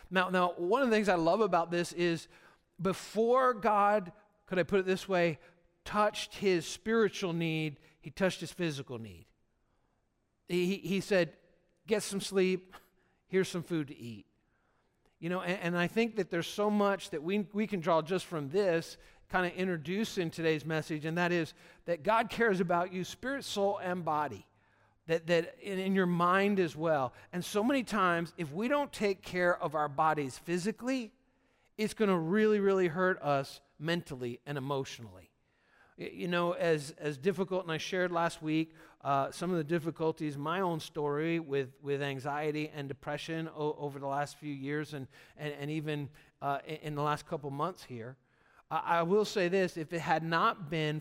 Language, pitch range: English, 150-190 Hz